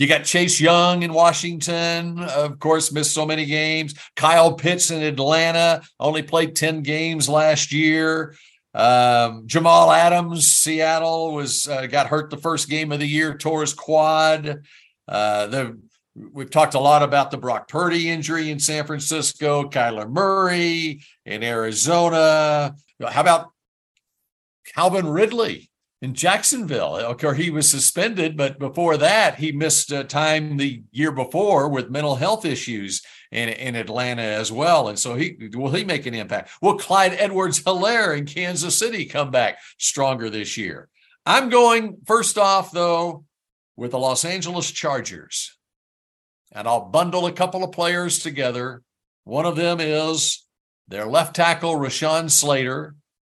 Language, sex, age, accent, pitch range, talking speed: English, male, 50-69, American, 140-170 Hz, 150 wpm